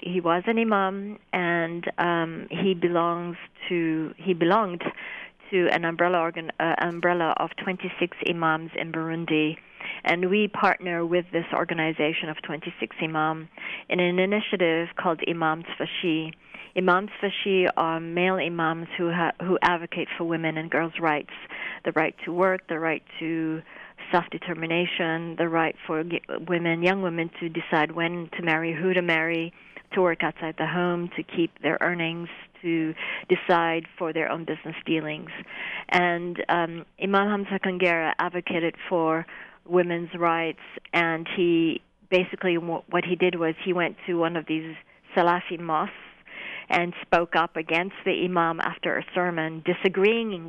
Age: 40-59